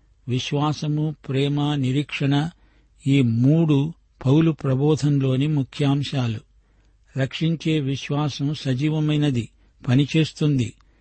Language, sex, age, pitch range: Telugu, male, 60-79, 130-150 Hz